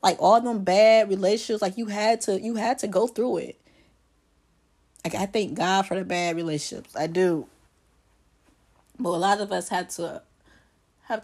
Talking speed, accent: 175 wpm, American